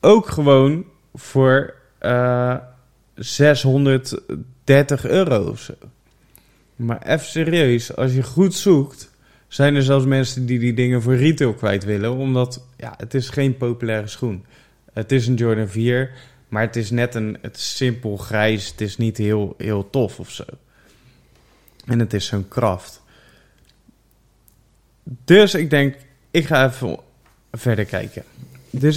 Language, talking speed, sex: Dutch, 135 wpm, male